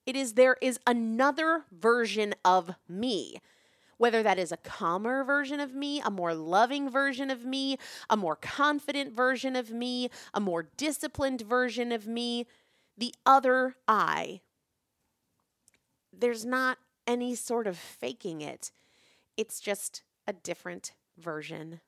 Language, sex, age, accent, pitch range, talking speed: English, female, 30-49, American, 190-260 Hz, 135 wpm